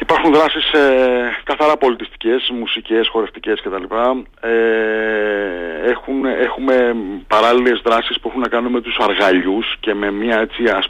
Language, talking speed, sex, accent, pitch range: Greek, 115 wpm, male, native, 100-130 Hz